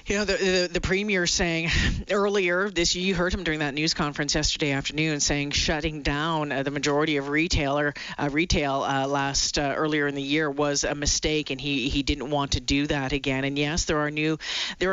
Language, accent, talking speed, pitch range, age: English, American, 215 wpm, 150-180 Hz, 40-59